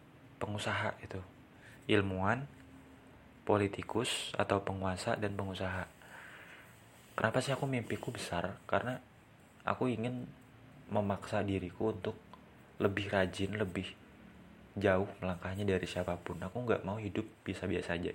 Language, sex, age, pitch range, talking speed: Indonesian, male, 20-39, 90-110 Hz, 105 wpm